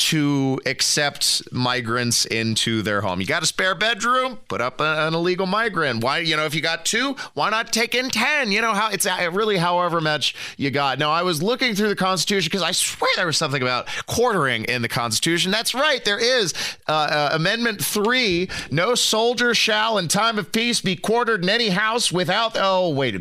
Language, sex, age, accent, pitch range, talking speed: English, male, 30-49, American, 125-185 Hz, 205 wpm